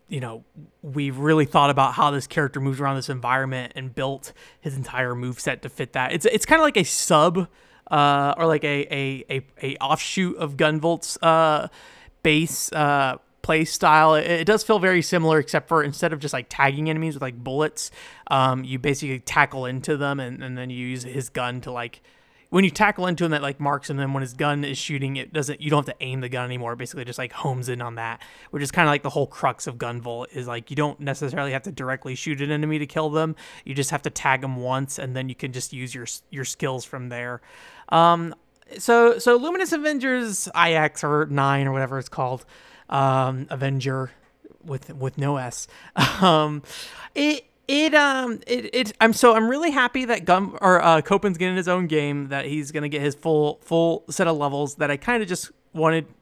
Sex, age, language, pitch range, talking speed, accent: male, 20-39, English, 135-170 Hz, 220 wpm, American